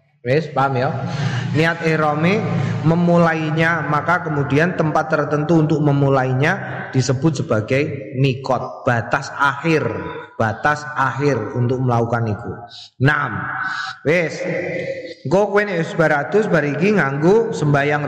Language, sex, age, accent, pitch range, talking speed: Indonesian, male, 20-39, native, 140-190 Hz, 95 wpm